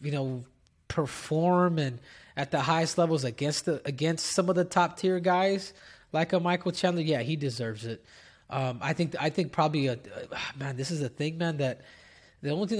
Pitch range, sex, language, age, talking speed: 130-160 Hz, male, English, 20-39, 200 wpm